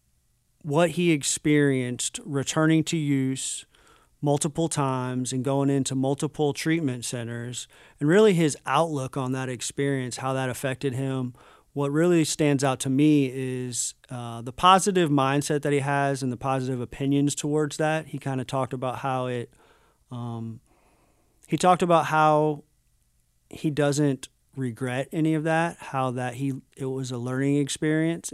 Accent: American